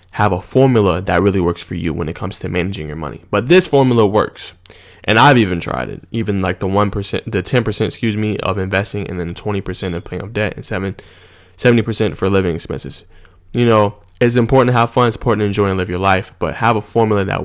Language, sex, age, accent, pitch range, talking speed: English, male, 20-39, American, 90-115 Hz, 230 wpm